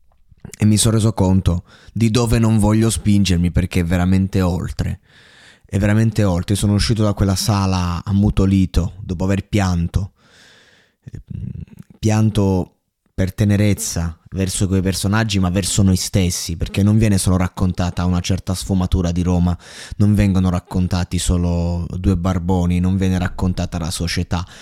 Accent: native